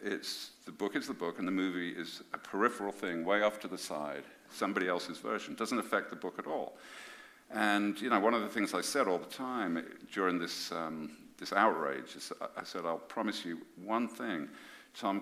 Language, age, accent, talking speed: English, 50-69, British, 215 wpm